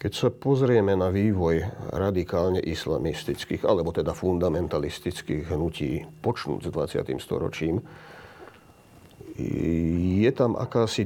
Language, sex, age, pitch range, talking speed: Slovak, male, 40-59, 95-115 Hz, 100 wpm